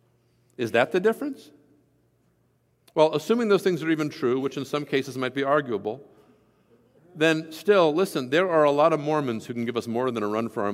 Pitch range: 115-160 Hz